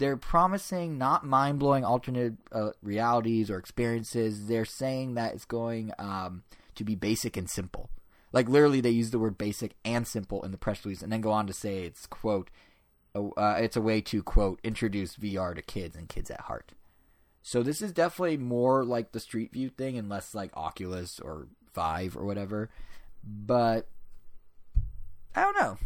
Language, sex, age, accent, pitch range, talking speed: English, male, 20-39, American, 95-120 Hz, 175 wpm